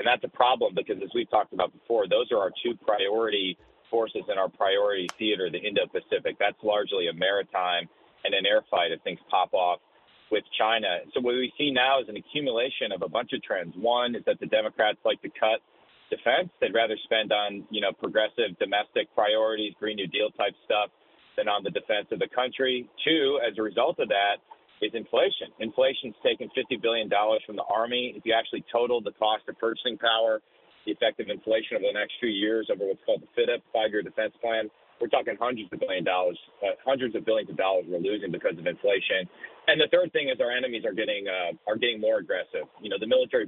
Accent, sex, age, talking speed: American, male, 40-59, 215 wpm